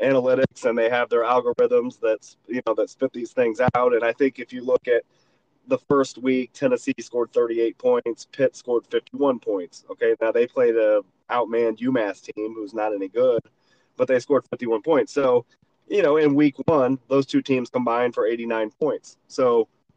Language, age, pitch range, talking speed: English, 30-49, 115-150 Hz, 190 wpm